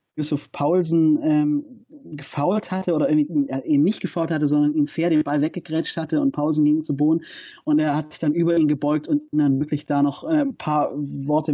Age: 30-49